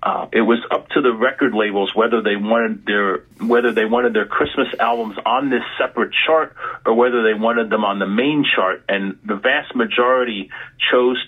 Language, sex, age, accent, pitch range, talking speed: English, male, 40-59, American, 110-160 Hz, 190 wpm